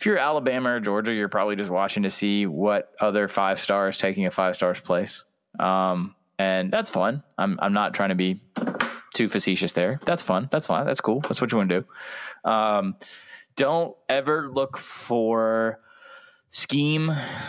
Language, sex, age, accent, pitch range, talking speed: English, male, 20-39, American, 100-130 Hz, 175 wpm